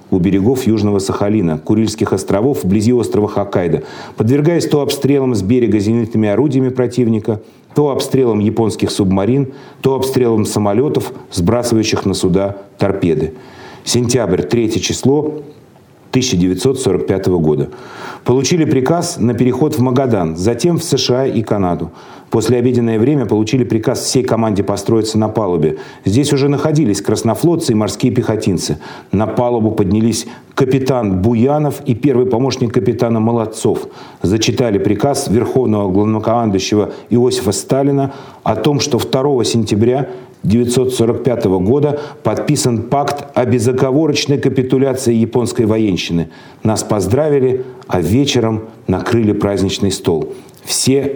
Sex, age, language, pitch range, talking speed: male, 40-59, Russian, 105-135 Hz, 115 wpm